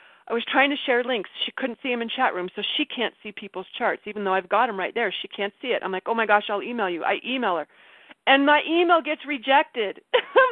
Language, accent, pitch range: English, American, 220-315 Hz